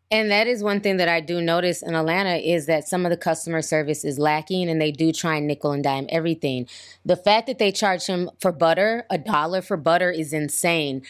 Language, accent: English, American